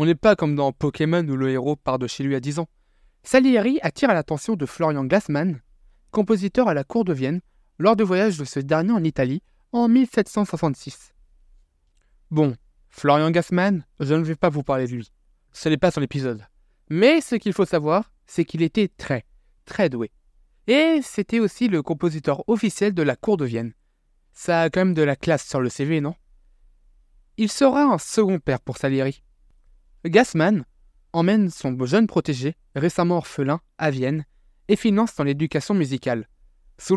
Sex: male